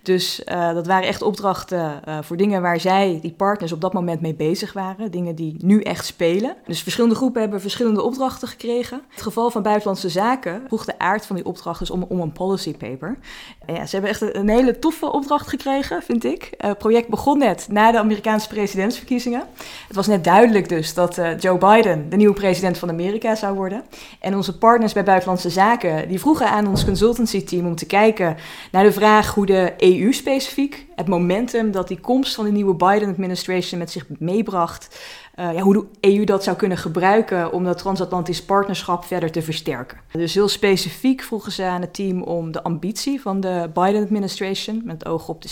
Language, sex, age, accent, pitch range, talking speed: Dutch, female, 20-39, Dutch, 170-210 Hz, 200 wpm